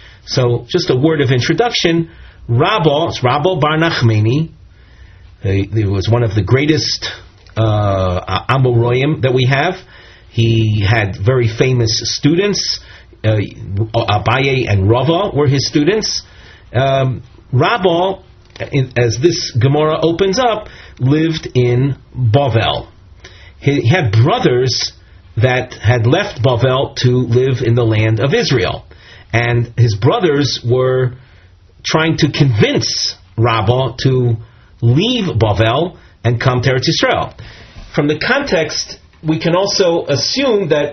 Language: English